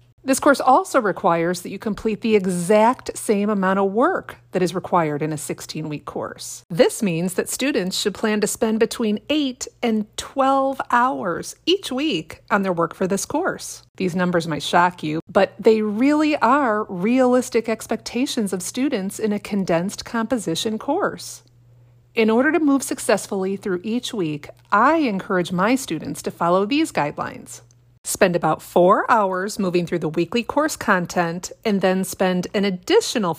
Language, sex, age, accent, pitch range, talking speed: English, female, 30-49, American, 175-240 Hz, 160 wpm